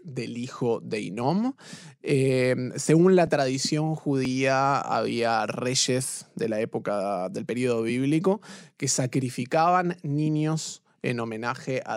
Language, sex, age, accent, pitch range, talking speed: Spanish, male, 20-39, Argentinian, 125-165 Hz, 115 wpm